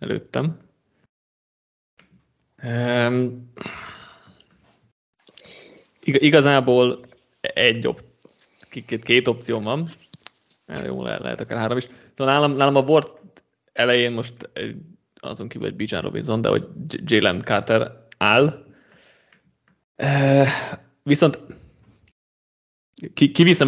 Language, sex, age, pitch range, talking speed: Hungarian, male, 20-39, 105-130 Hz, 80 wpm